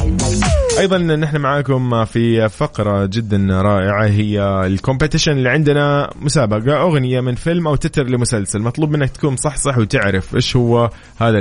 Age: 20-39